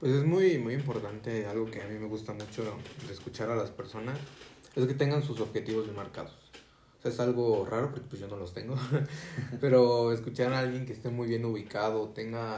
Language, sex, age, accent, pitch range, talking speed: Spanish, male, 30-49, Mexican, 110-125 Hz, 210 wpm